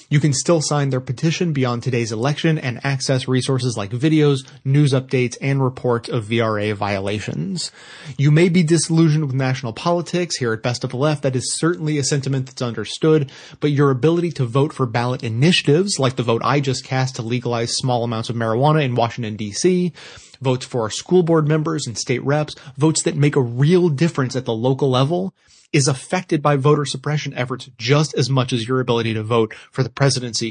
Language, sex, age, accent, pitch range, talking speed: English, male, 30-49, American, 125-150 Hz, 195 wpm